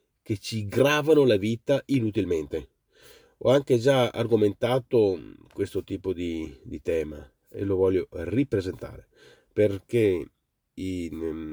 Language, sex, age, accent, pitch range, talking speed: Italian, male, 40-59, native, 95-125 Hz, 110 wpm